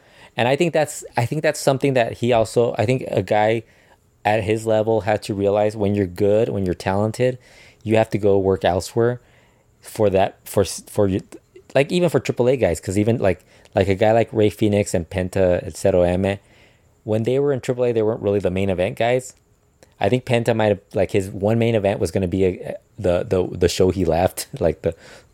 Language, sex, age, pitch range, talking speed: English, male, 20-39, 95-110 Hz, 215 wpm